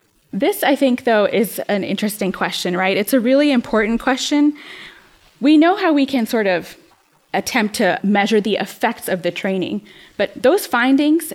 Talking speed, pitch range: 170 wpm, 190-240 Hz